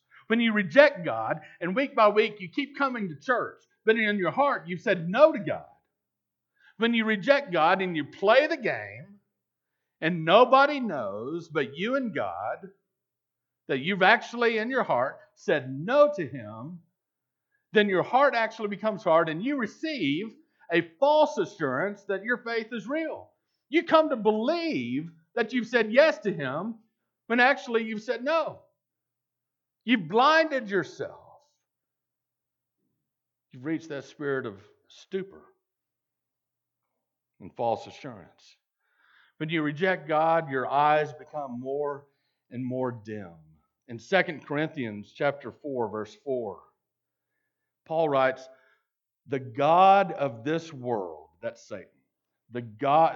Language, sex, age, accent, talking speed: English, male, 50-69, American, 135 wpm